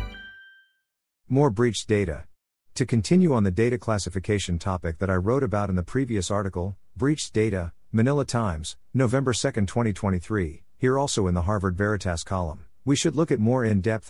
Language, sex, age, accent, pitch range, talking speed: English, male, 50-69, American, 90-115 Hz, 165 wpm